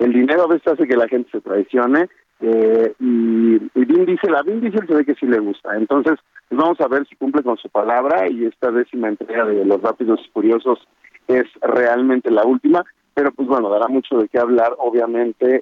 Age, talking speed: 50-69, 205 wpm